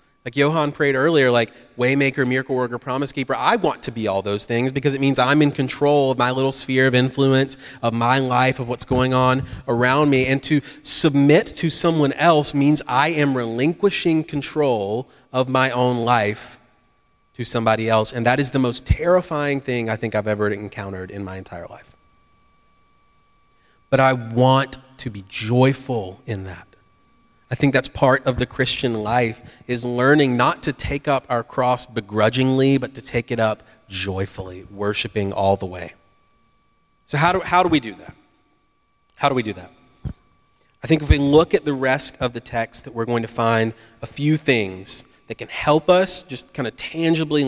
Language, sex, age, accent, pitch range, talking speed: English, male, 30-49, American, 110-140 Hz, 185 wpm